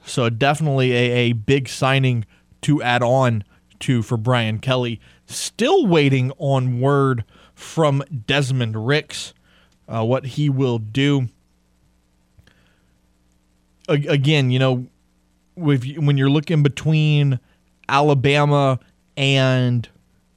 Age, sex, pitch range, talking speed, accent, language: 20-39, male, 115-140 Hz, 105 wpm, American, English